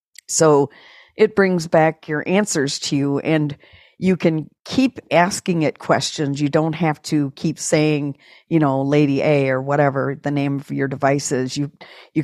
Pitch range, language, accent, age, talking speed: 145-170 Hz, English, American, 50-69, 170 wpm